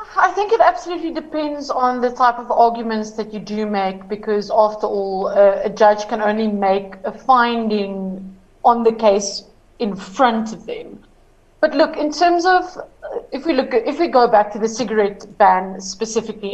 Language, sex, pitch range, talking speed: English, female, 205-265 Hz, 185 wpm